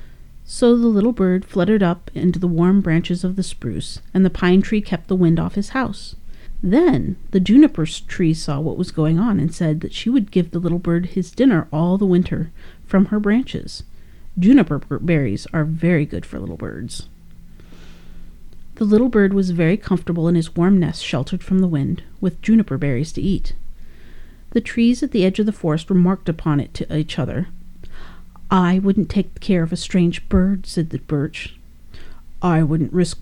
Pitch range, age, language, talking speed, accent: 155-200 Hz, 40-59, English, 190 wpm, American